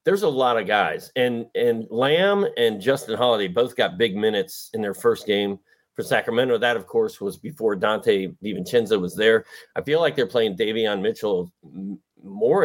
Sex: male